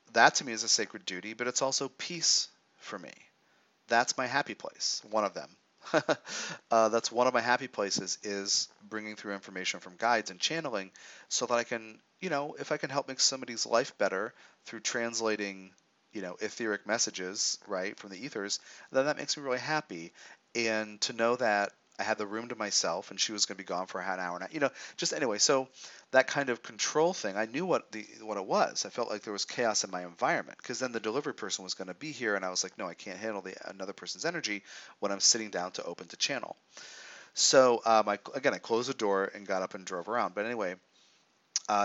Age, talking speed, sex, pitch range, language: 40-59, 230 wpm, male, 100-125 Hz, English